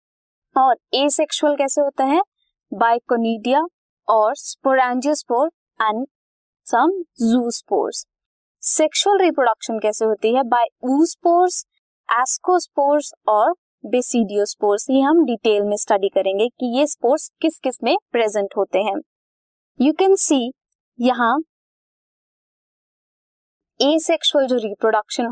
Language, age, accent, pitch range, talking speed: Hindi, 20-39, native, 225-310 Hz, 105 wpm